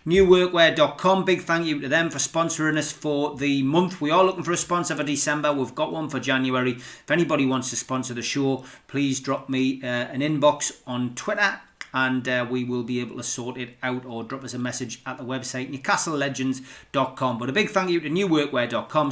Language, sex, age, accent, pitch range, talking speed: English, male, 30-49, British, 130-160 Hz, 205 wpm